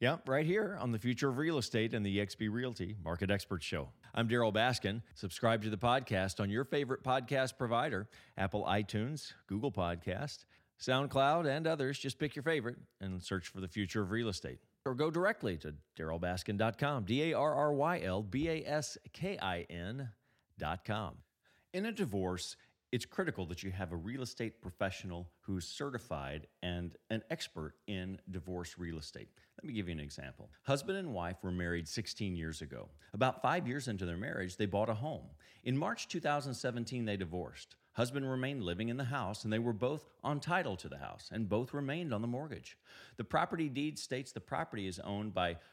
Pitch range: 90-135 Hz